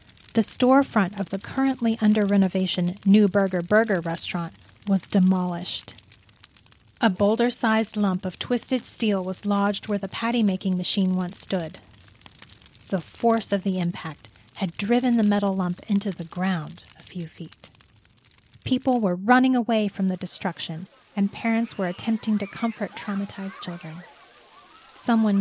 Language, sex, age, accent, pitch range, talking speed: English, female, 30-49, American, 180-220 Hz, 135 wpm